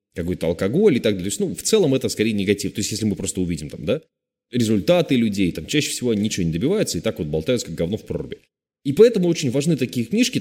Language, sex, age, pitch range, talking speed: Russian, male, 20-39, 95-130 Hz, 240 wpm